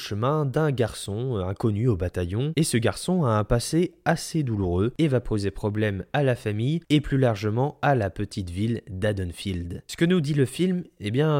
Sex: male